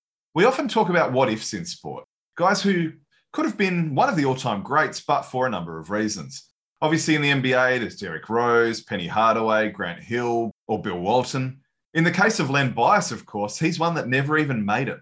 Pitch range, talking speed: 110-165 Hz, 210 wpm